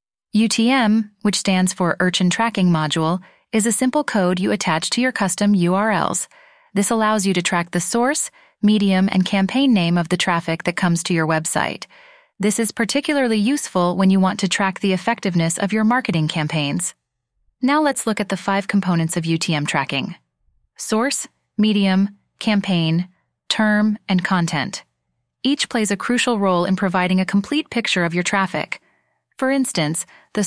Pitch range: 175-230 Hz